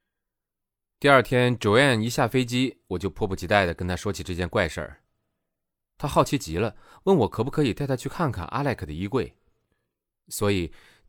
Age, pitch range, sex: 30-49, 90-135 Hz, male